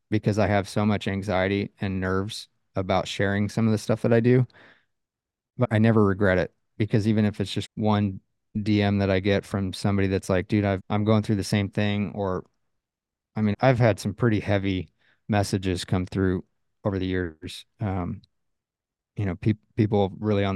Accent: American